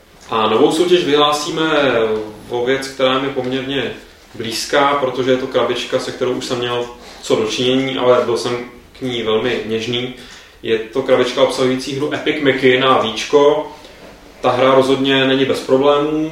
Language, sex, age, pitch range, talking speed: Czech, male, 20-39, 115-130 Hz, 160 wpm